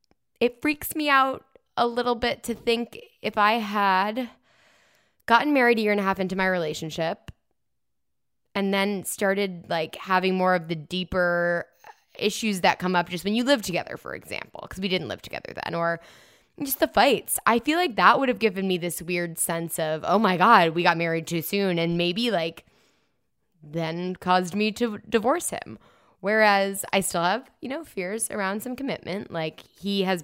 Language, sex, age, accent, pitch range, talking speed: English, female, 10-29, American, 165-210 Hz, 185 wpm